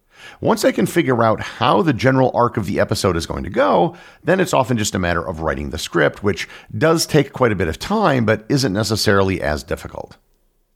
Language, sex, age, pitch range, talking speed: English, male, 50-69, 85-120 Hz, 220 wpm